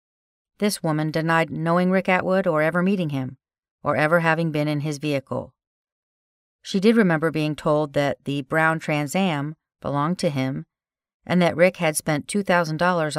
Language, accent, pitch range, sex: English, American, 140-175 Hz, female